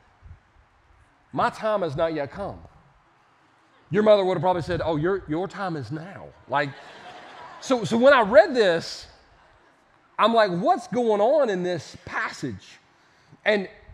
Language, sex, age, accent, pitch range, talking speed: English, male, 40-59, American, 150-215 Hz, 145 wpm